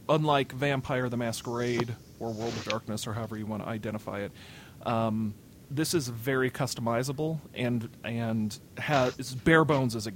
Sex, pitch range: male, 110-130 Hz